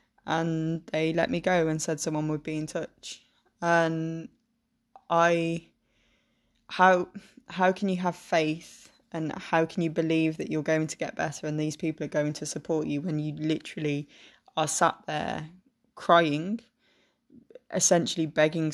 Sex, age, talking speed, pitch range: female, 20-39, 155 wpm, 145-170 Hz